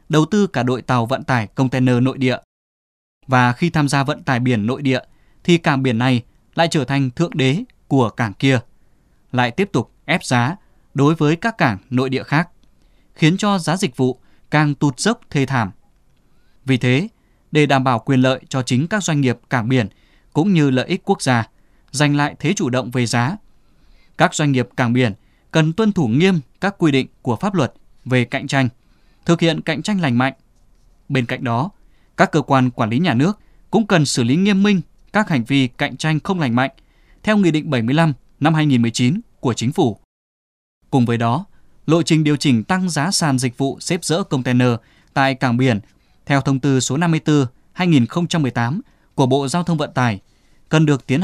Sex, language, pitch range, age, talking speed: male, Vietnamese, 125-160 Hz, 20-39, 200 wpm